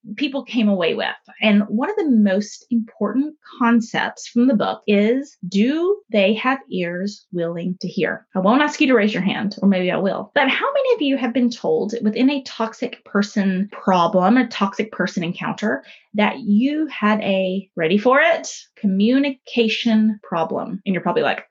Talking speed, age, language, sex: 180 wpm, 20-39, English, female